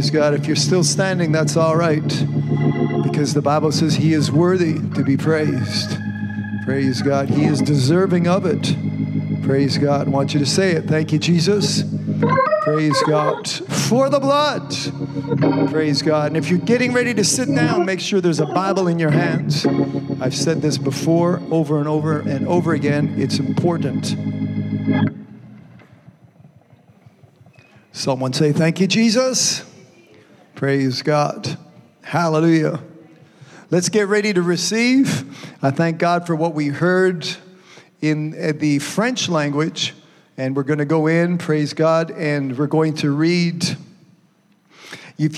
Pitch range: 145-180 Hz